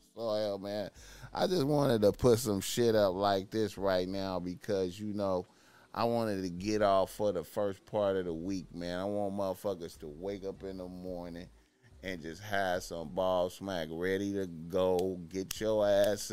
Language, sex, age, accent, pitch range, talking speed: English, male, 30-49, American, 90-100 Hz, 190 wpm